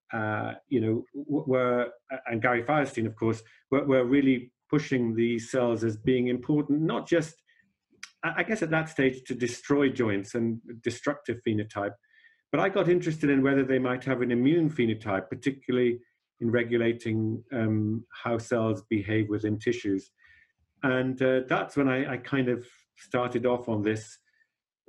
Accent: British